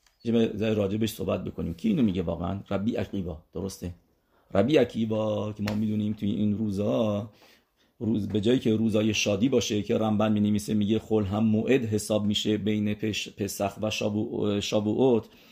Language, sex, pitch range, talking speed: English, male, 105-135 Hz, 160 wpm